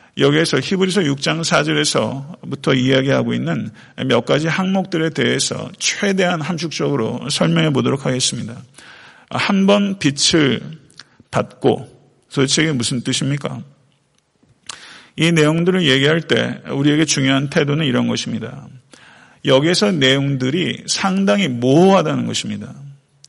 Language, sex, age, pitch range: Korean, male, 40-59, 130-165 Hz